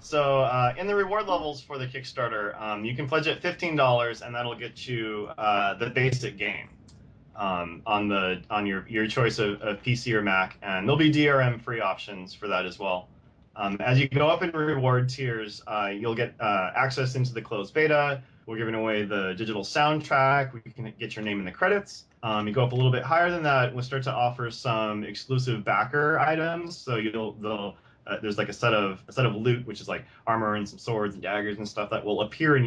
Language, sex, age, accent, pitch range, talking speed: English, male, 30-49, American, 105-135 Hz, 220 wpm